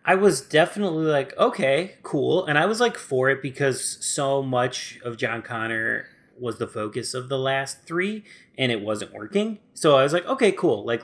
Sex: male